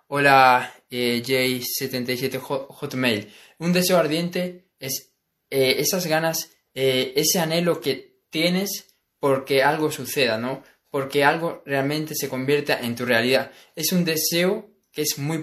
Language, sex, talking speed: Spanish, male, 135 wpm